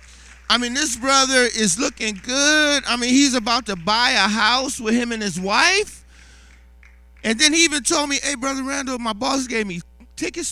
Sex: male